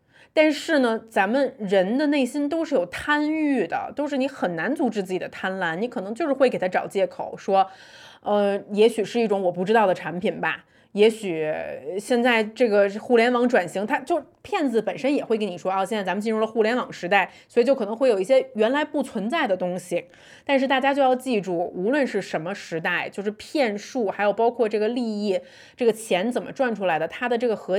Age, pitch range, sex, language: 20-39, 190-255 Hz, female, Chinese